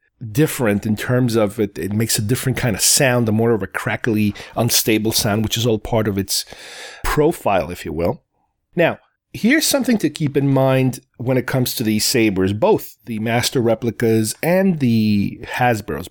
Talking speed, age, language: 185 wpm, 40-59, English